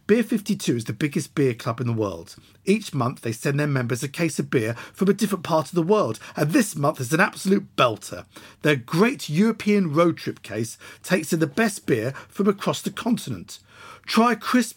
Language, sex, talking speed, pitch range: English, male, 205 wpm, 135-205 Hz